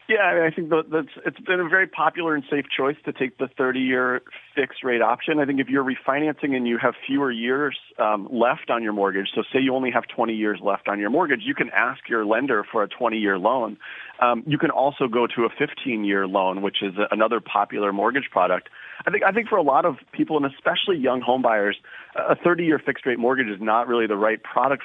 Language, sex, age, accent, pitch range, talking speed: English, male, 40-59, American, 110-140 Hz, 225 wpm